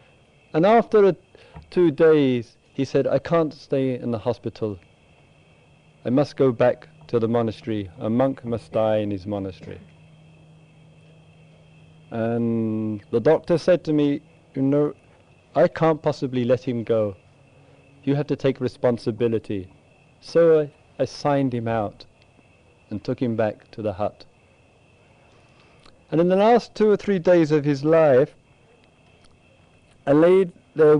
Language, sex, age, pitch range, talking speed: English, male, 50-69, 115-155 Hz, 140 wpm